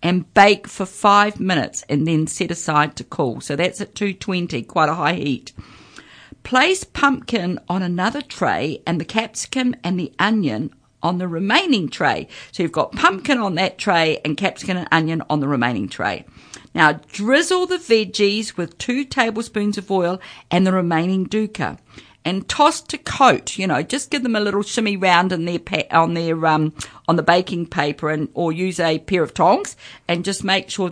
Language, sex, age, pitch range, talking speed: English, female, 50-69, 165-215 Hz, 185 wpm